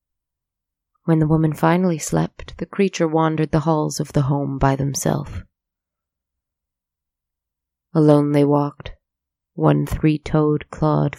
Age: 20-39